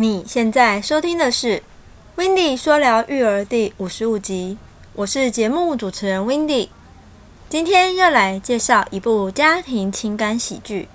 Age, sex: 20-39, female